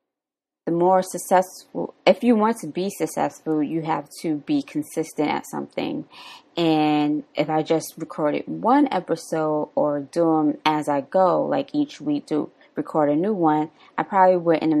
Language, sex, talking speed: English, female, 165 wpm